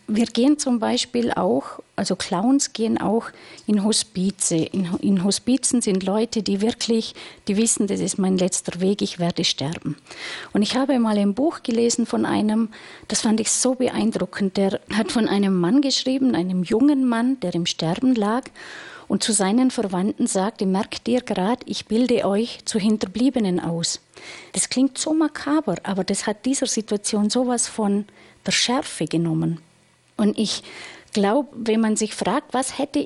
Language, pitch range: German, 190-245 Hz